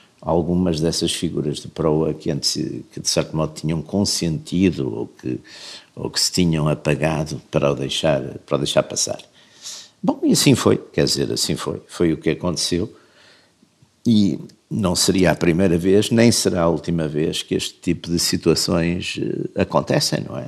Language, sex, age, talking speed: Portuguese, male, 60-79, 170 wpm